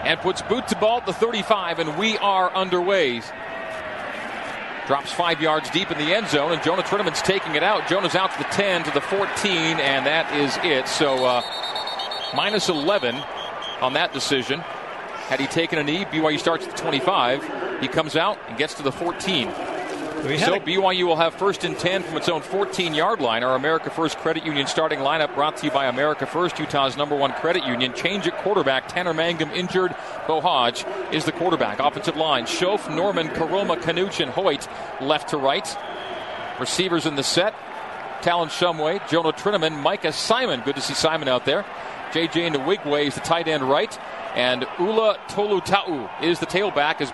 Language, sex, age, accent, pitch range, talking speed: English, male, 40-59, American, 150-190 Hz, 185 wpm